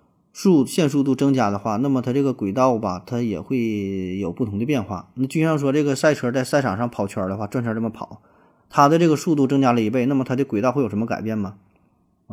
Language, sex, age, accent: Chinese, male, 20-39, native